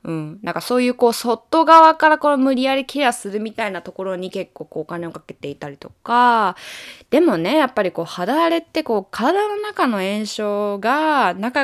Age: 20-39